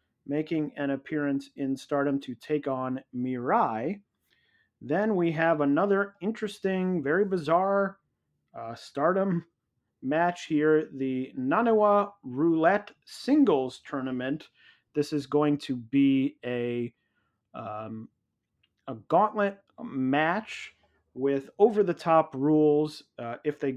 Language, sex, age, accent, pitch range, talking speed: English, male, 30-49, American, 130-170 Hz, 105 wpm